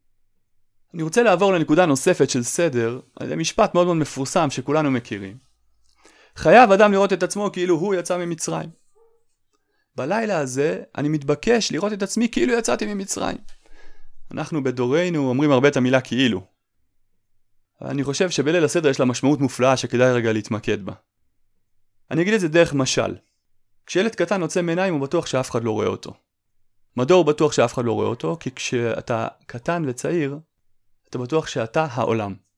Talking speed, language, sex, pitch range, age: 155 wpm, Hebrew, male, 115-175 Hz, 30-49